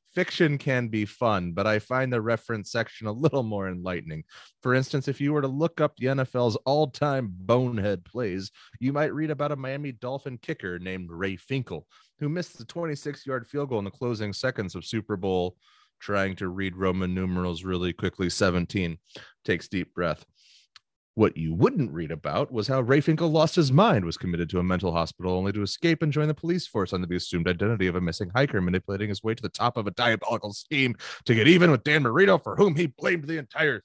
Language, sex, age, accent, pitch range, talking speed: English, male, 30-49, American, 95-145 Hz, 210 wpm